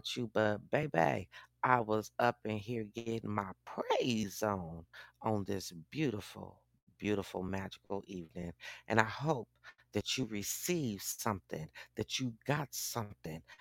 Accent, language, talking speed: American, English, 130 wpm